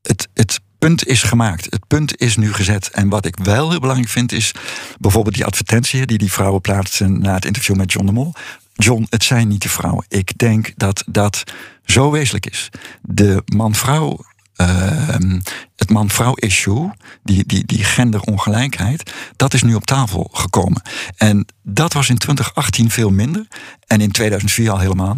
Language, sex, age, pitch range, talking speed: Dutch, male, 60-79, 100-120 Hz, 170 wpm